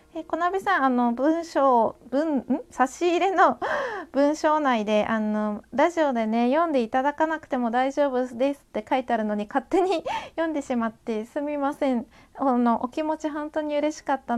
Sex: female